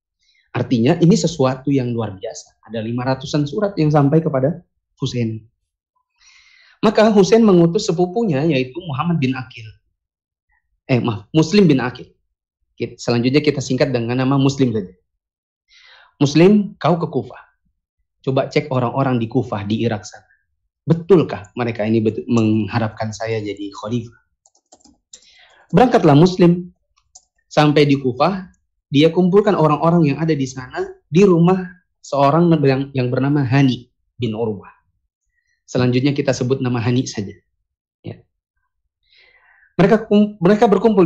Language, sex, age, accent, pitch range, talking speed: Indonesian, male, 30-49, native, 120-180 Hz, 125 wpm